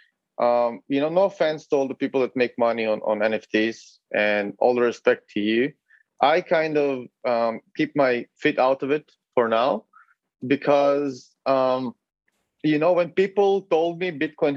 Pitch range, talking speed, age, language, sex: 115-145 Hz, 175 wpm, 30-49, English, male